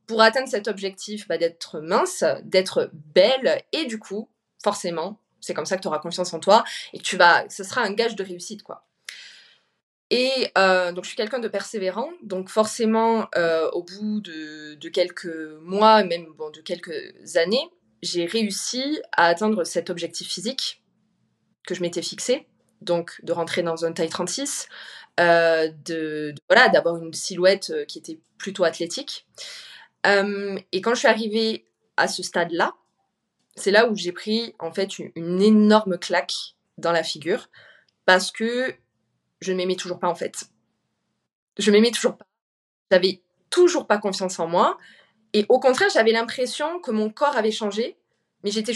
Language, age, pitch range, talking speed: French, 20-39, 175-225 Hz, 170 wpm